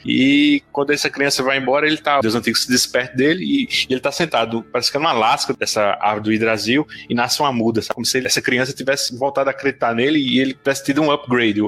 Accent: Brazilian